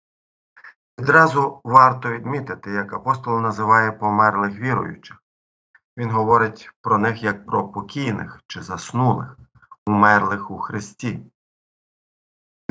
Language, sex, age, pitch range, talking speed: Ukrainian, male, 50-69, 105-125 Hz, 95 wpm